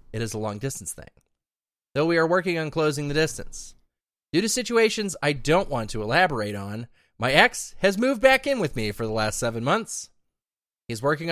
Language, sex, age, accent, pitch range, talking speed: English, male, 30-49, American, 115-185 Hz, 200 wpm